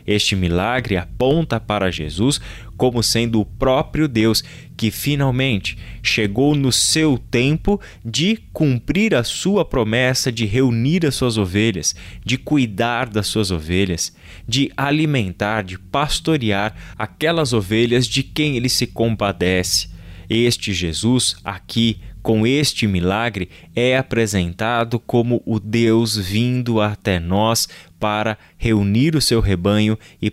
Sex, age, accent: male, 20-39, Brazilian